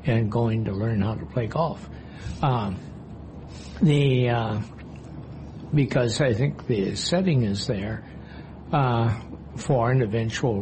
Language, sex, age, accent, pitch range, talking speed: English, male, 60-79, American, 100-135 Hz, 125 wpm